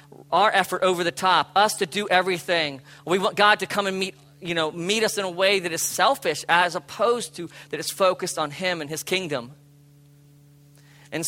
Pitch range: 145-195 Hz